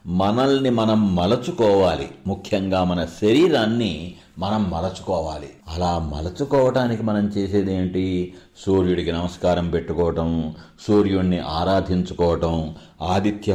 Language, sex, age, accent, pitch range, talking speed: Telugu, male, 50-69, native, 90-115 Hz, 85 wpm